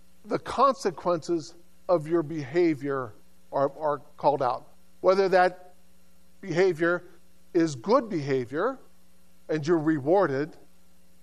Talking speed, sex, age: 95 wpm, male, 50-69